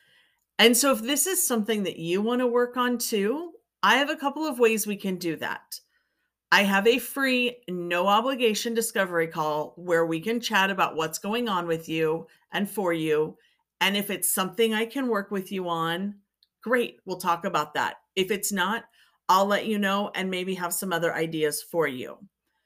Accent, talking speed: American, 195 wpm